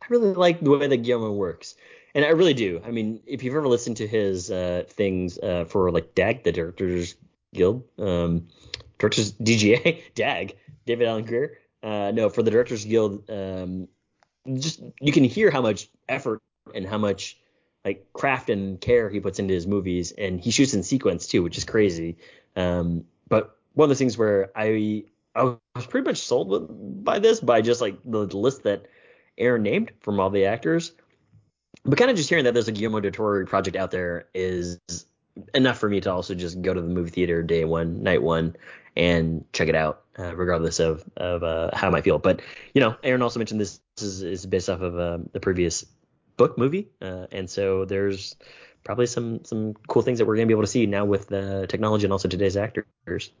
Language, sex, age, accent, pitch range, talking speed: English, male, 30-49, American, 90-115 Hz, 205 wpm